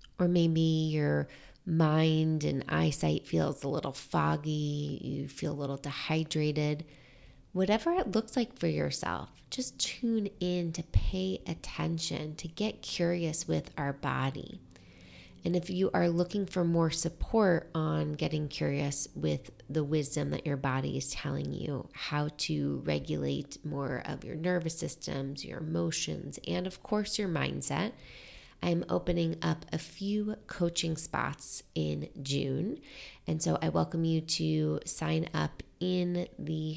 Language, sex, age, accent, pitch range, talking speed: English, female, 30-49, American, 135-175 Hz, 140 wpm